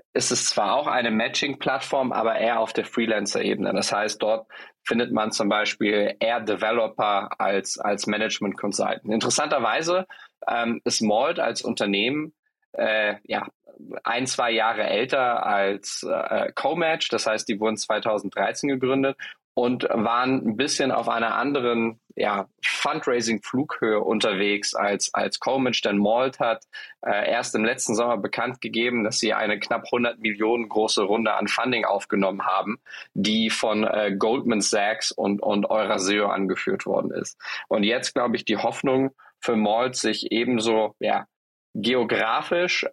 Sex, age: male, 20-39